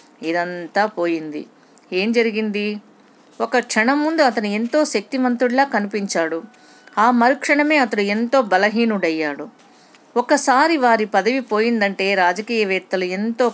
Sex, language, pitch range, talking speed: female, Telugu, 190-255 Hz, 100 wpm